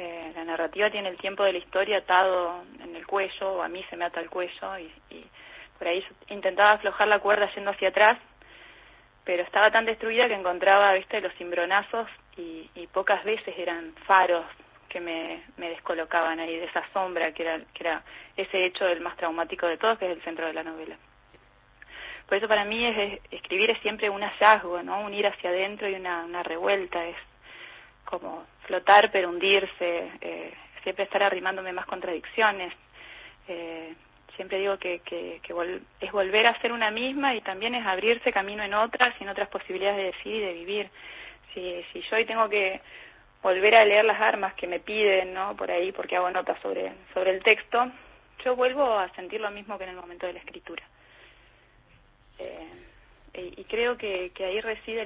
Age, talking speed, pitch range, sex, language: 20-39, 190 wpm, 175-210 Hz, female, Spanish